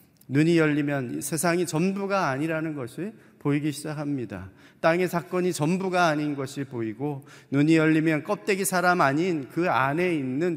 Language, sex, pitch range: Korean, male, 125-170 Hz